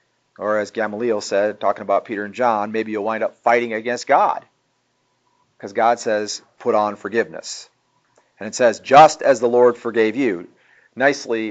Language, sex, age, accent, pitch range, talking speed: English, male, 40-59, American, 110-130 Hz, 165 wpm